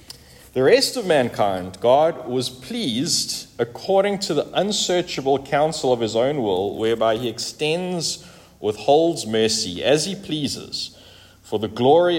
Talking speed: 135 wpm